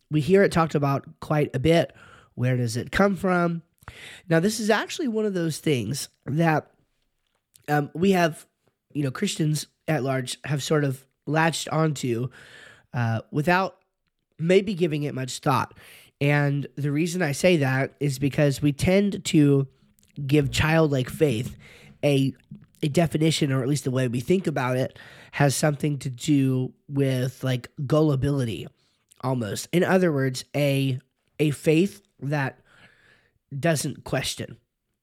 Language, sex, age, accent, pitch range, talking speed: English, male, 20-39, American, 130-165 Hz, 145 wpm